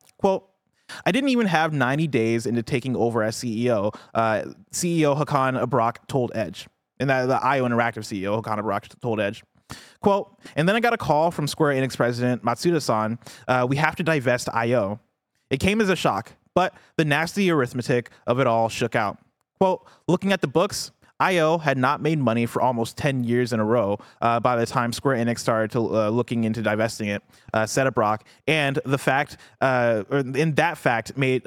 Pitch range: 115-155 Hz